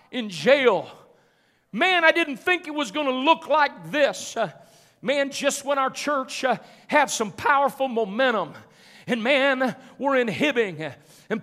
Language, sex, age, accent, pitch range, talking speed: English, male, 40-59, American, 245-295 Hz, 145 wpm